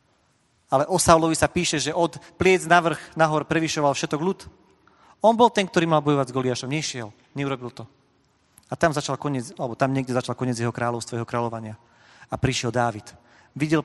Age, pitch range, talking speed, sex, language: 40-59, 120-160 Hz, 180 wpm, male, Slovak